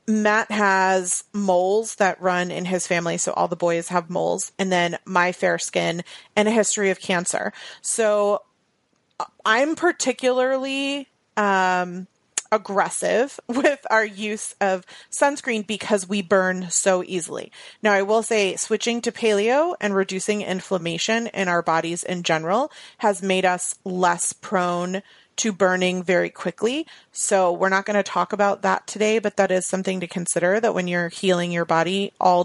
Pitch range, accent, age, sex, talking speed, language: 180-220 Hz, American, 30-49, female, 160 wpm, English